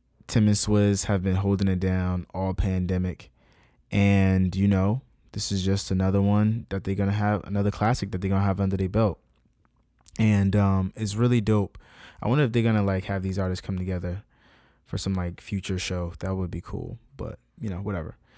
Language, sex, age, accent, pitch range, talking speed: English, male, 20-39, American, 95-105 Hz, 205 wpm